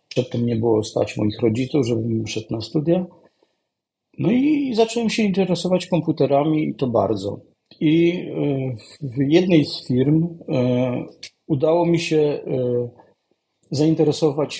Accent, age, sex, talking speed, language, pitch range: native, 50-69, male, 115 wpm, Polish, 120-155 Hz